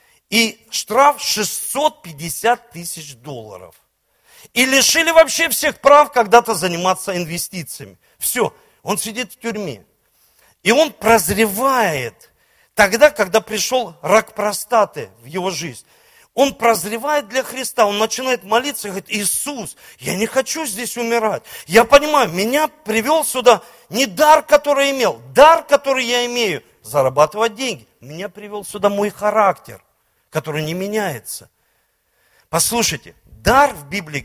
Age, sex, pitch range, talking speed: 40-59, male, 175-270 Hz, 125 wpm